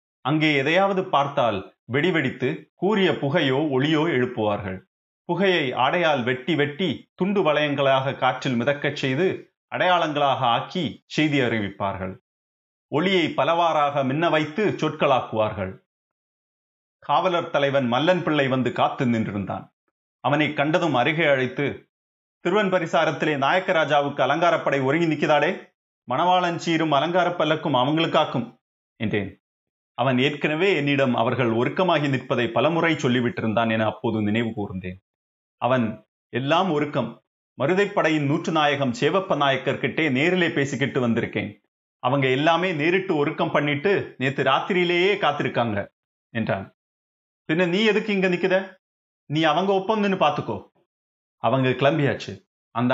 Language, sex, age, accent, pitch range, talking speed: Tamil, male, 30-49, native, 120-170 Hz, 105 wpm